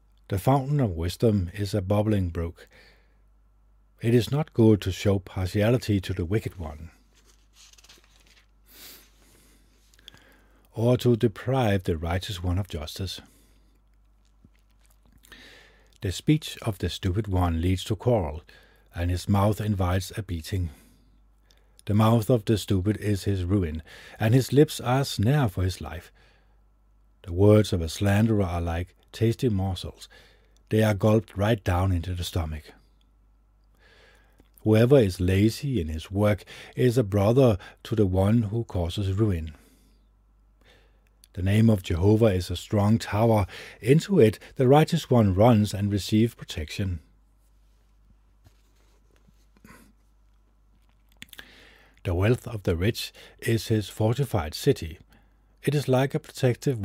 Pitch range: 95-110 Hz